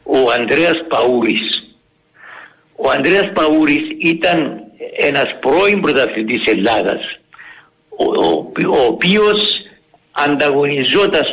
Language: Greek